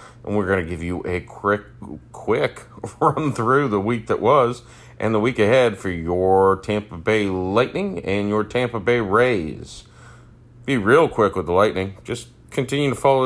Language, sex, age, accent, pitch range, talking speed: English, male, 30-49, American, 95-120 Hz, 175 wpm